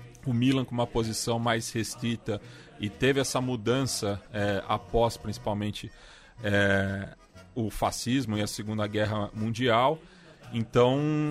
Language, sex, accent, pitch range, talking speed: Portuguese, male, Brazilian, 110-135 Hz, 120 wpm